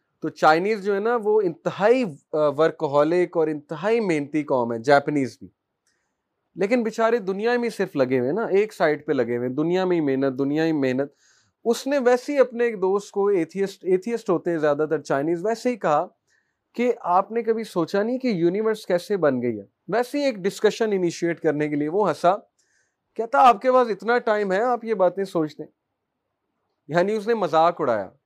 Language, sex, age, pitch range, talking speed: Urdu, male, 30-49, 155-210 Hz, 195 wpm